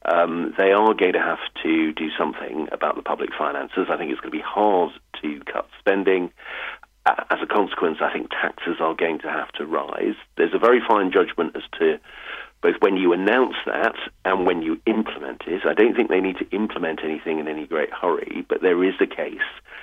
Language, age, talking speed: English, 50-69, 210 wpm